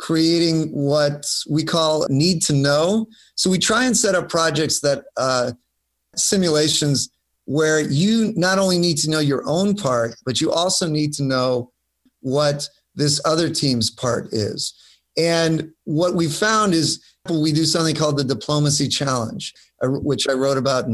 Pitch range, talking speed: 135-165 Hz, 160 wpm